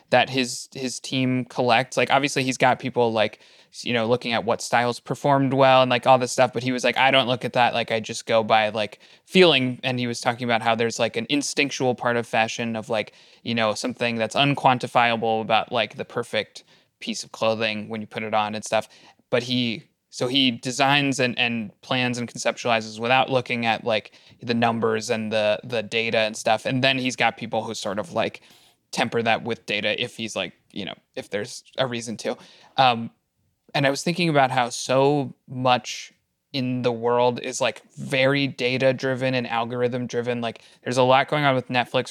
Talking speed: 205 wpm